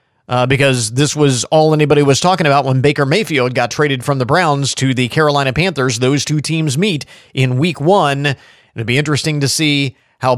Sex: male